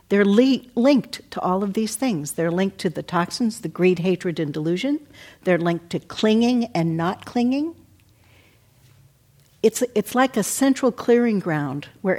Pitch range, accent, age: 150-215 Hz, American, 60-79